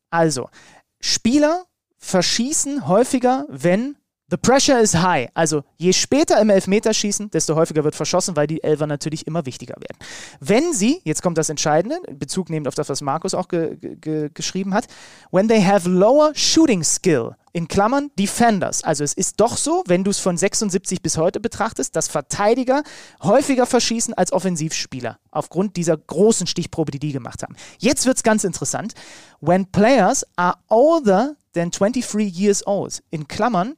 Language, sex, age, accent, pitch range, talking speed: German, male, 30-49, German, 165-225 Hz, 170 wpm